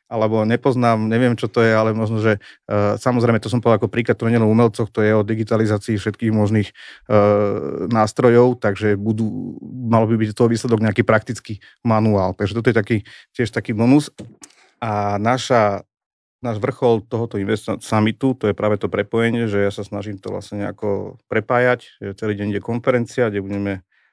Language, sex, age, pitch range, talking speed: Slovak, male, 40-59, 100-115 Hz, 175 wpm